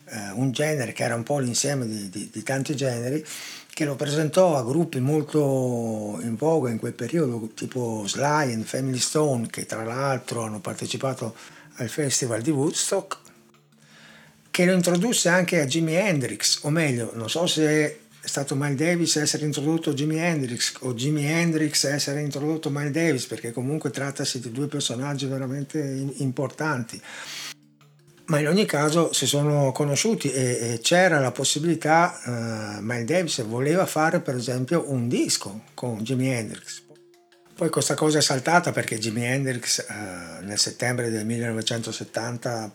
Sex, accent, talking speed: male, native, 155 wpm